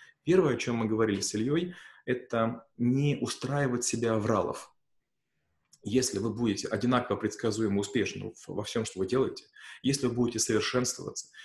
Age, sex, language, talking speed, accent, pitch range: 30-49, male, Russian, 140 wpm, native, 115-135 Hz